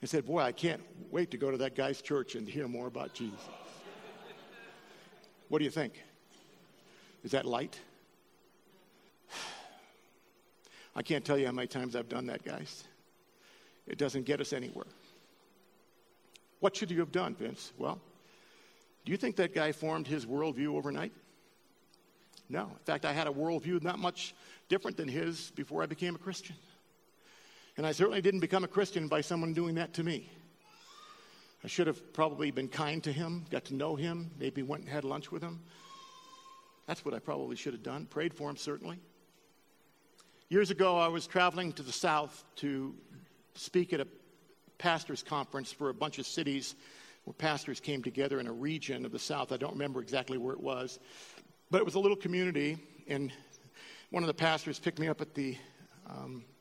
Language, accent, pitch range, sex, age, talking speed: English, American, 140-180 Hz, male, 50-69, 180 wpm